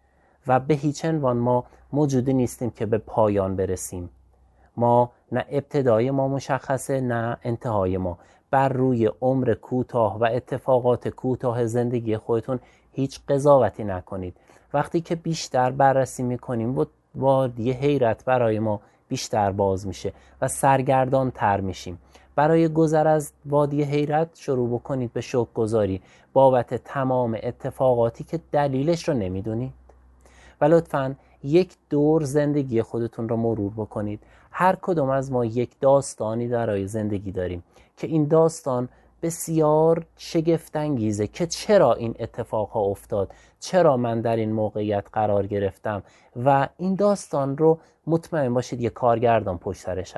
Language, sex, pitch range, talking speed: Persian, male, 110-145 Hz, 130 wpm